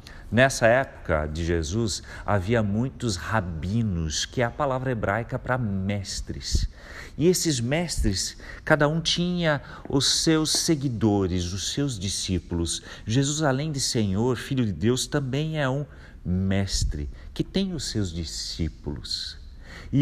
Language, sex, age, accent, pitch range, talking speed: Portuguese, male, 50-69, Brazilian, 95-135 Hz, 130 wpm